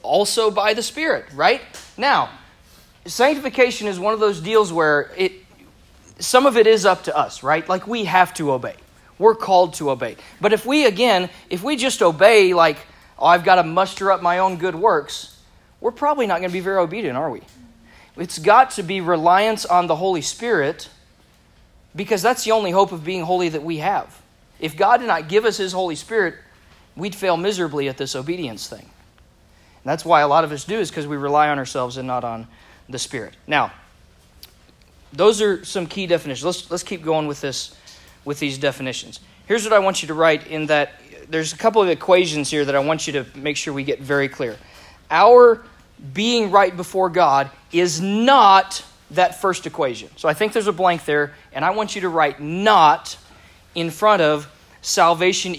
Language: English